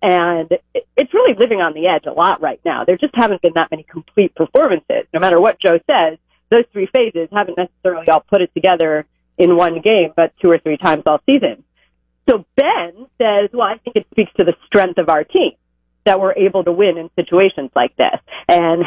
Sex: female